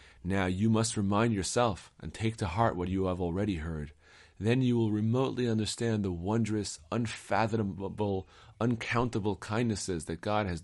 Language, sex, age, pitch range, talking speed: English, male, 30-49, 85-110 Hz, 150 wpm